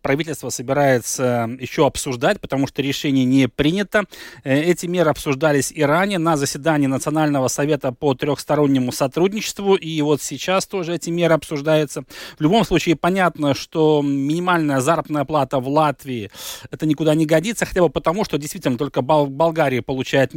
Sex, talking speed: male, 145 wpm